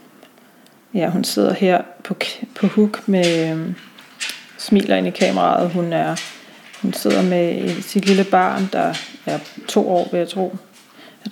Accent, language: native, Danish